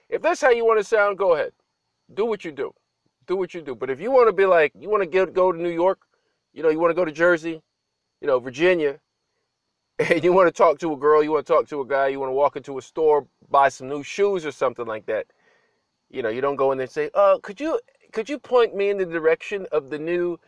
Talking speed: 275 wpm